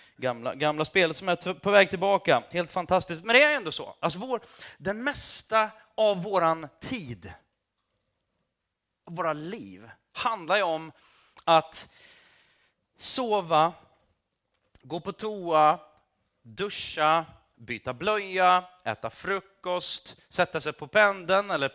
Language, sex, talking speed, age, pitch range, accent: Swedish, male, 115 wpm, 30-49, 150-200 Hz, native